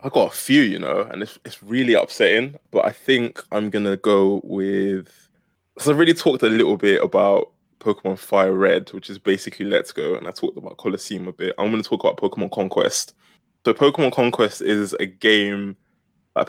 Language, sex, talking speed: English, male, 205 wpm